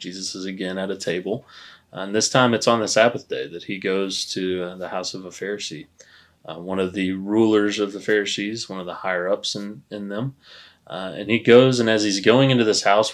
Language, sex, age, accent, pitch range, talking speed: English, male, 20-39, American, 90-110 Hz, 230 wpm